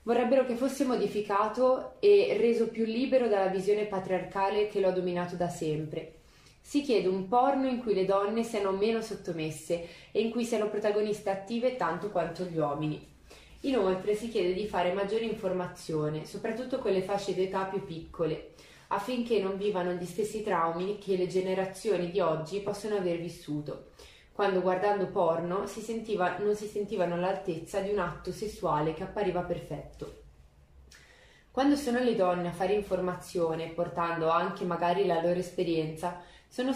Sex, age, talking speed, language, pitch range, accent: female, 20-39, 155 wpm, Italian, 175-210 Hz, native